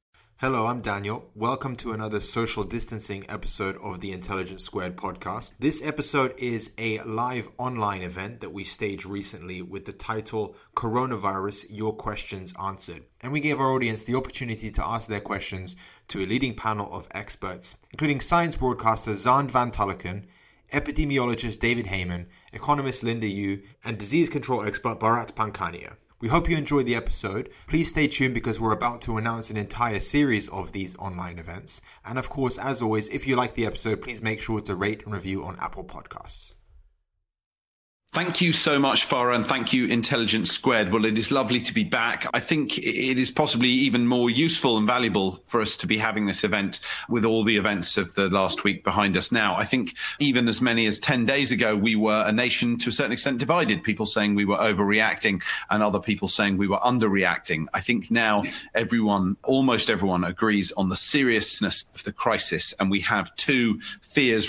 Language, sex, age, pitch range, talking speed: English, male, 20-39, 100-125 Hz, 185 wpm